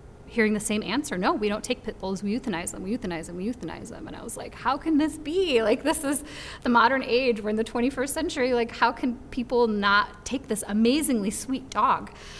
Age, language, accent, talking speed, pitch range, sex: 30-49, English, American, 230 wpm, 185-235 Hz, female